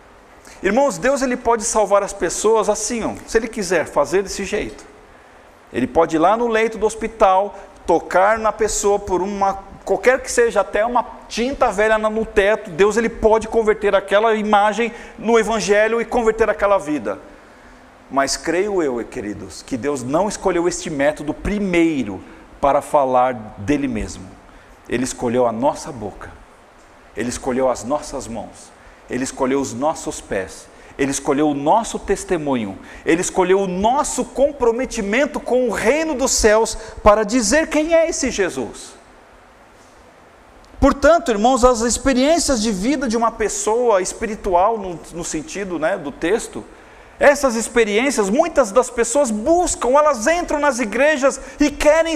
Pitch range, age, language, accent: 195-280 Hz, 40-59, Portuguese, Brazilian